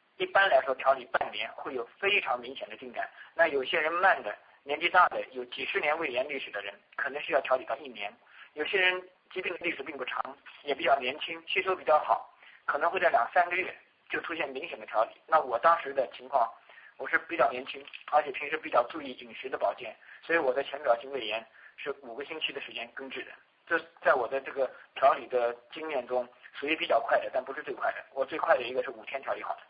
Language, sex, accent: English, male, Chinese